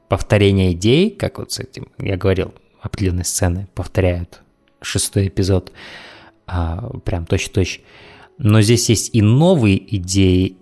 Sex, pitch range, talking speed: male, 95-120 Hz, 120 wpm